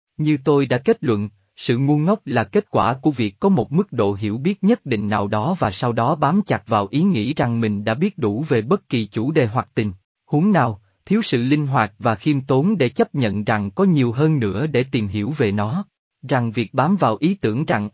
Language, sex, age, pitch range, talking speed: Vietnamese, male, 20-39, 115-155 Hz, 240 wpm